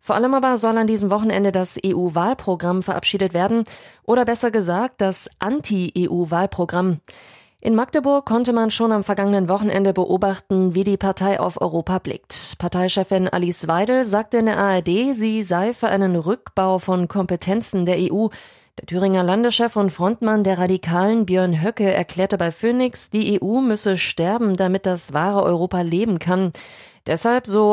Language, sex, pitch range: German, female, 185-220 Hz